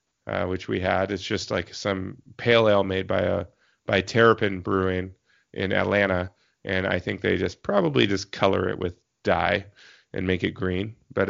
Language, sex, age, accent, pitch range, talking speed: English, male, 30-49, American, 95-110 Hz, 180 wpm